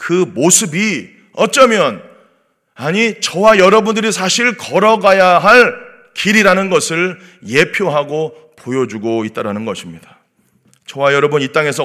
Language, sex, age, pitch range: Korean, male, 30-49, 180-240 Hz